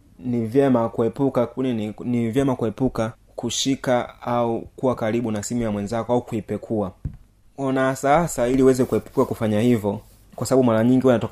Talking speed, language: 160 wpm, Swahili